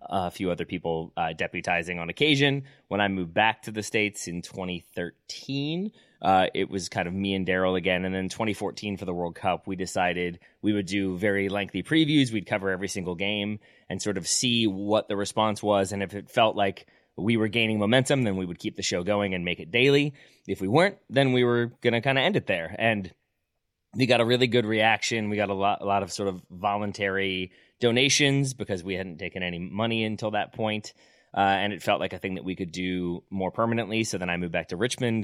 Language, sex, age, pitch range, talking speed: English, male, 30-49, 90-110 Hz, 230 wpm